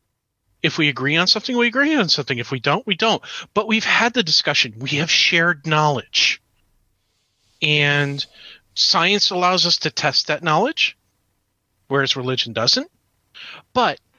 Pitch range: 110-170 Hz